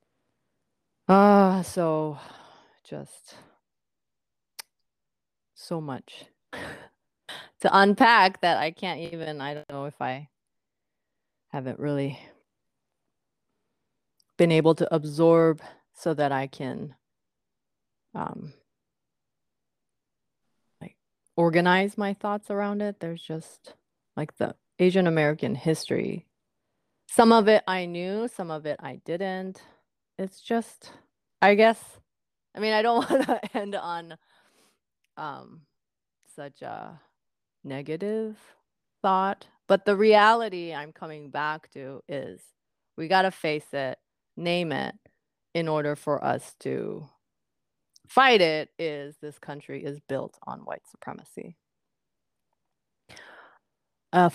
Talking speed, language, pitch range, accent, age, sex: 110 wpm, English, 150-195 Hz, American, 30-49, female